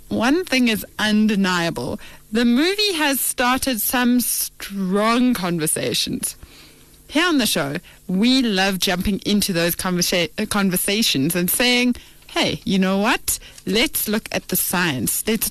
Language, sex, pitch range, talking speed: English, female, 185-265 Hz, 130 wpm